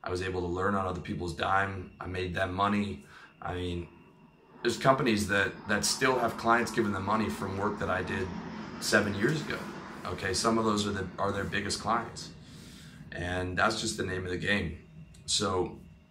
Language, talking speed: English, 195 wpm